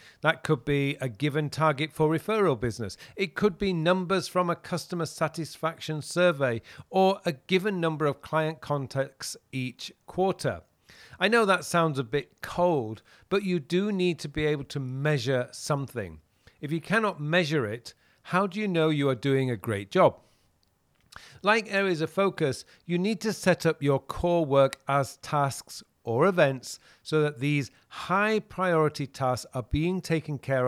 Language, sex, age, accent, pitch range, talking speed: English, male, 40-59, British, 130-175 Hz, 165 wpm